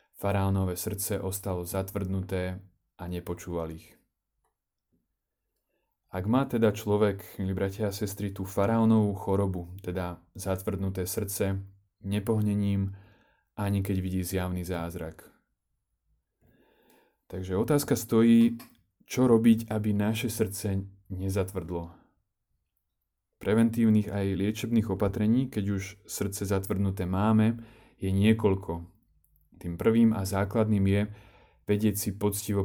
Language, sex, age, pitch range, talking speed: Slovak, male, 30-49, 95-110 Hz, 100 wpm